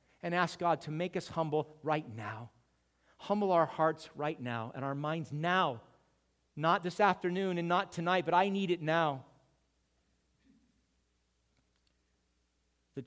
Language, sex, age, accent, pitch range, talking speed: English, male, 50-69, American, 135-180 Hz, 140 wpm